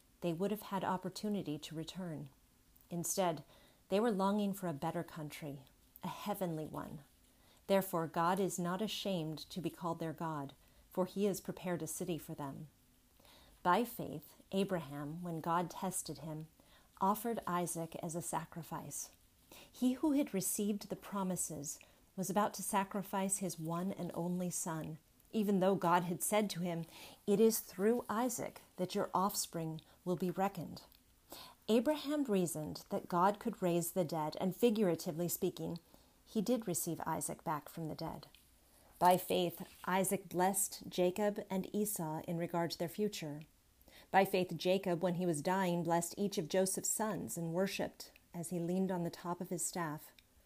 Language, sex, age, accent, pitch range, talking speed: English, female, 40-59, American, 165-195 Hz, 160 wpm